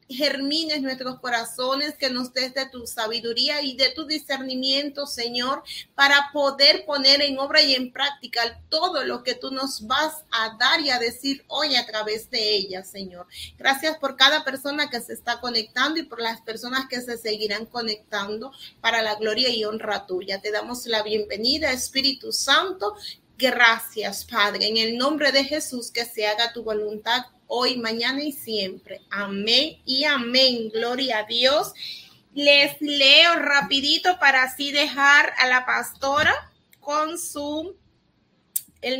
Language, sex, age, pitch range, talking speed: English, female, 30-49, 230-280 Hz, 155 wpm